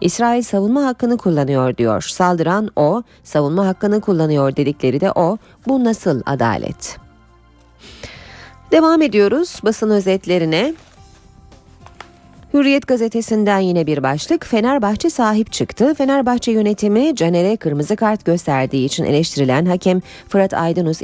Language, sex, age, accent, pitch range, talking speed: Turkish, female, 30-49, native, 155-225 Hz, 110 wpm